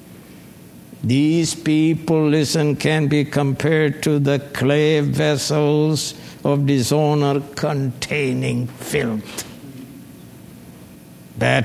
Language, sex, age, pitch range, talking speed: English, male, 60-79, 135-160 Hz, 75 wpm